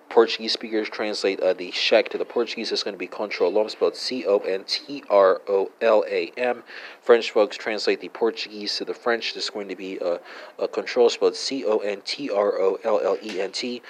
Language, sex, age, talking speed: English, male, 40-59, 145 wpm